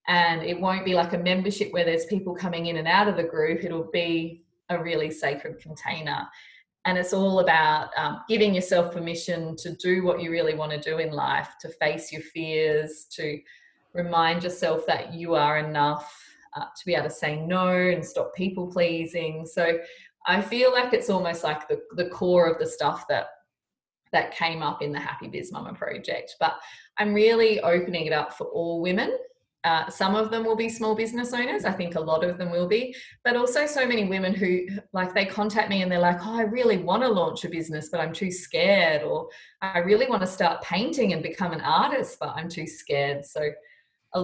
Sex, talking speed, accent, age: female, 210 wpm, Australian, 20-39